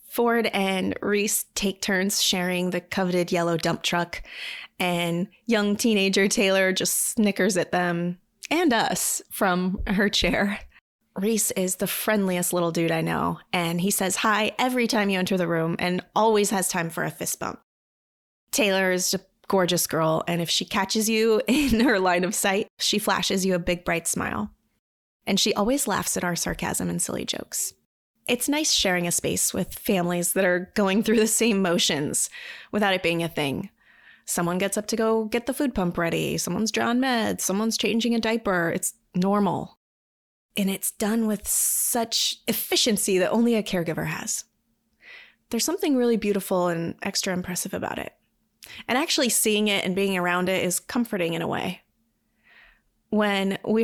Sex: female